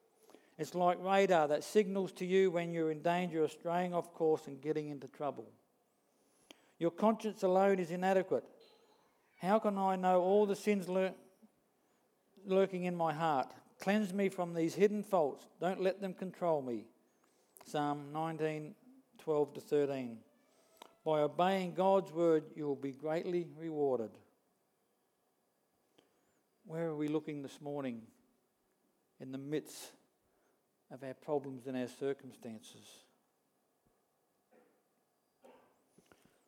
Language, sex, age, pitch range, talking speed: English, male, 50-69, 150-190 Hz, 125 wpm